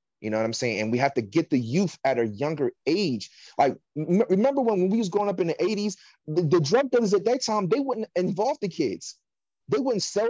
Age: 30-49